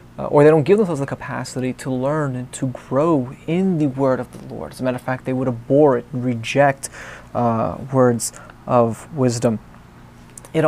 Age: 20-39